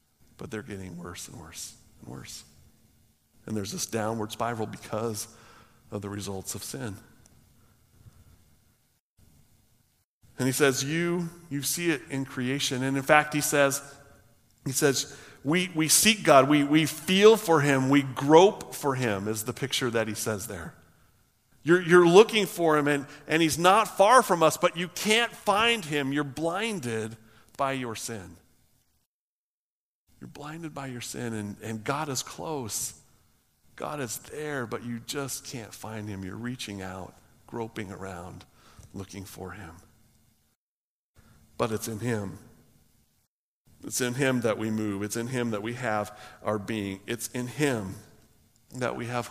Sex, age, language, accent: male, 50-69, English, American